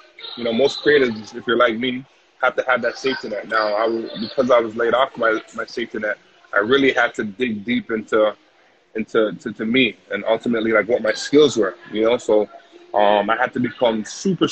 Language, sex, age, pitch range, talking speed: English, male, 20-39, 110-130 Hz, 215 wpm